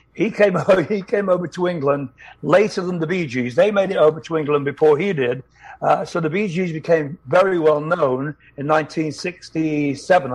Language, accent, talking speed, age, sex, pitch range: English, British, 195 wpm, 60-79, male, 145-180 Hz